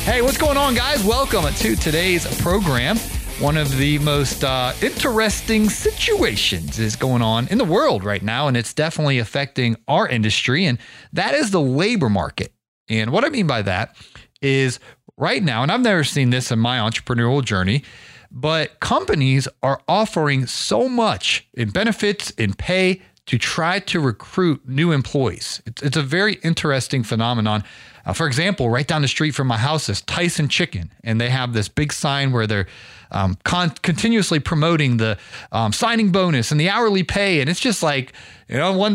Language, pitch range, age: English, 120-185 Hz, 30-49